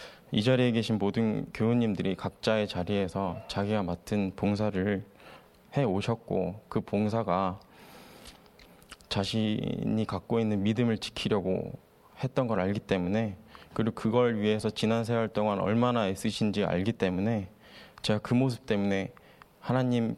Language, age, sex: Korean, 20-39, male